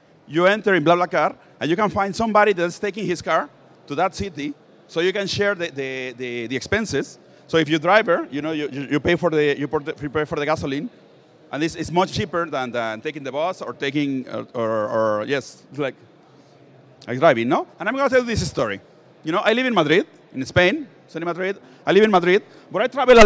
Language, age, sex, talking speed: English, 40-59, male, 235 wpm